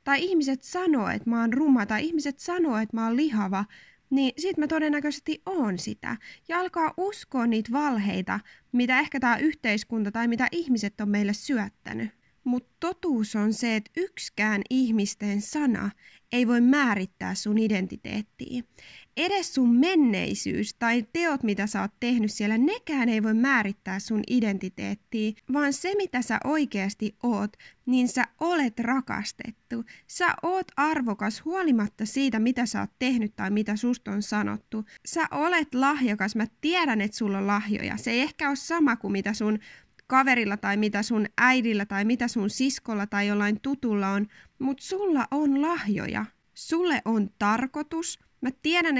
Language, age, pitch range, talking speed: Finnish, 20-39, 210-290 Hz, 155 wpm